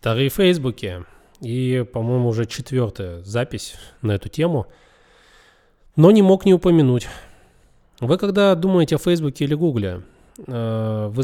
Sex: male